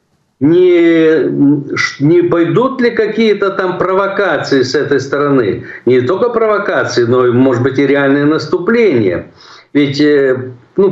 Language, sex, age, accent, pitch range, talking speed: Ukrainian, male, 50-69, native, 145-240 Hz, 120 wpm